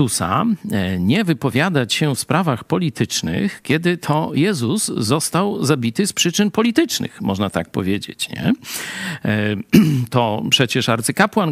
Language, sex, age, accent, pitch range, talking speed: Polish, male, 50-69, native, 115-155 Hz, 110 wpm